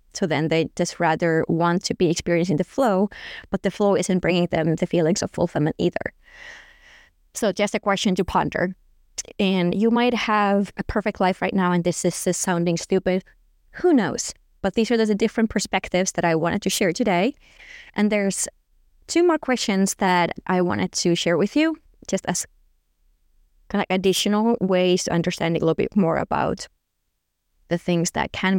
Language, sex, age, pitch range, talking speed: English, female, 20-39, 175-210 Hz, 180 wpm